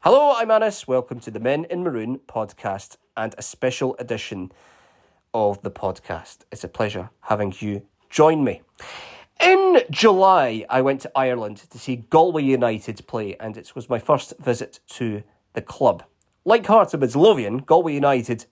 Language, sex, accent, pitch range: English, male, British, 120-185 Hz